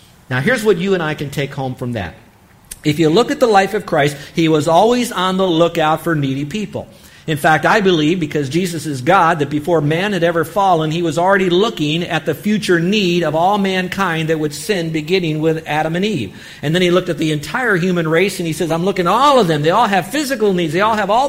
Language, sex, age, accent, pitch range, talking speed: English, male, 50-69, American, 145-190 Hz, 250 wpm